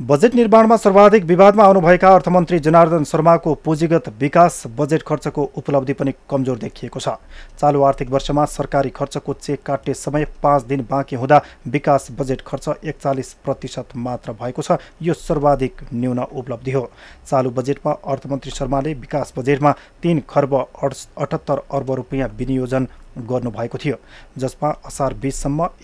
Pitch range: 130-155 Hz